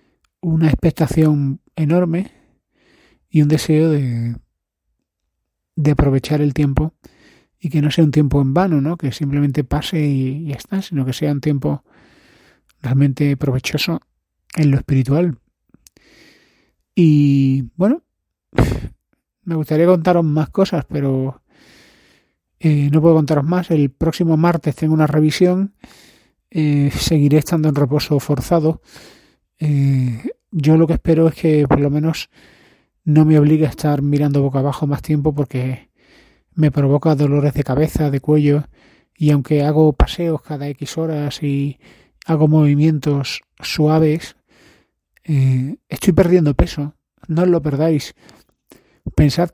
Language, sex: Spanish, male